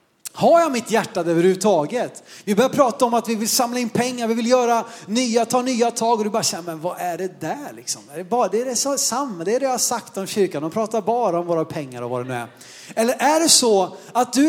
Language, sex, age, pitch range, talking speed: Swedish, male, 30-49, 200-265 Hz, 265 wpm